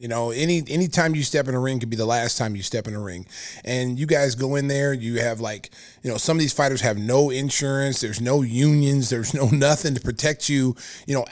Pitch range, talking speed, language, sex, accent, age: 130-170 Hz, 260 wpm, English, male, American, 30-49